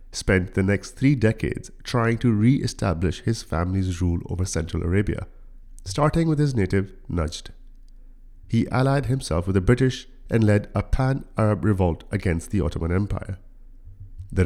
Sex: male